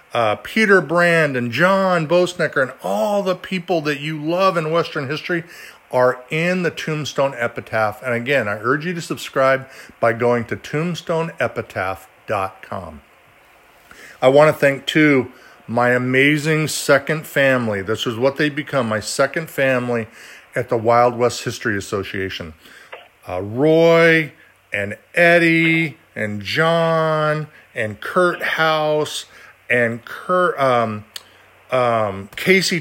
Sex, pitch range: male, 125-170 Hz